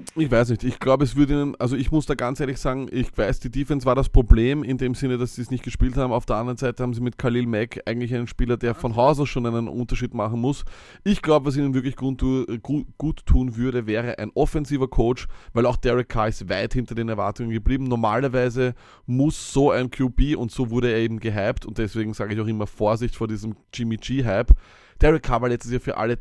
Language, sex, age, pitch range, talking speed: German, male, 20-39, 115-130 Hz, 235 wpm